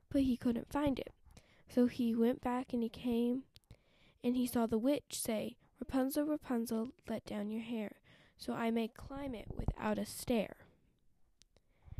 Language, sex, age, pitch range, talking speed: English, female, 10-29, 225-265 Hz, 160 wpm